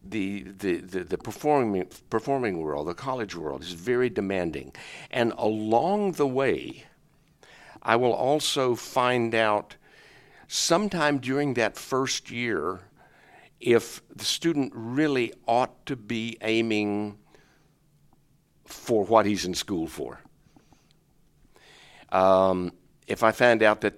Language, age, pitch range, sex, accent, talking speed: English, 60-79, 95-125 Hz, male, American, 120 wpm